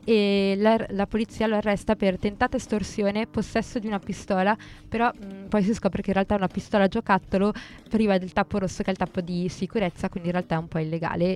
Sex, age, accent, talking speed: female, 20-39, native, 220 wpm